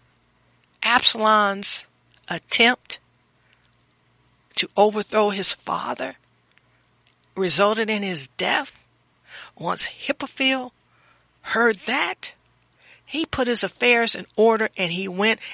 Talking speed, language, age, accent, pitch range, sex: 90 wpm, English, 60-79, American, 145-205 Hz, female